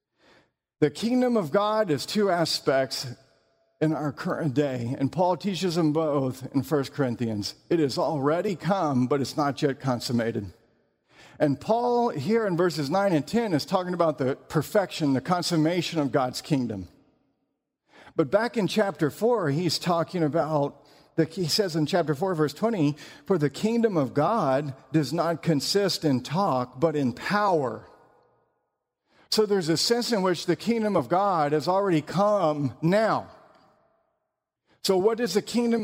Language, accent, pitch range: English, American, 145-210 Hz